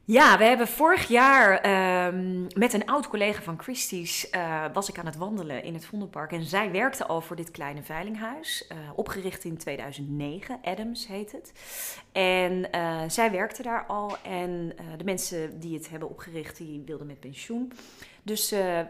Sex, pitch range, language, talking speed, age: female, 160-200 Hz, Dutch, 175 wpm, 30-49